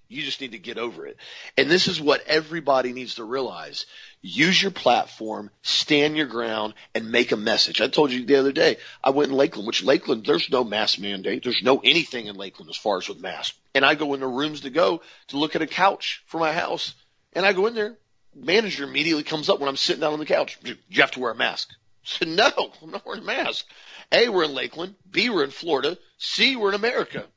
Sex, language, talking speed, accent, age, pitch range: male, English, 240 wpm, American, 40-59, 120-170 Hz